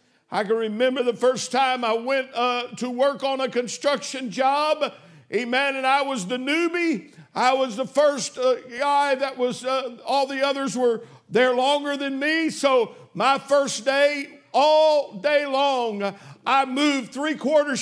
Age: 60-79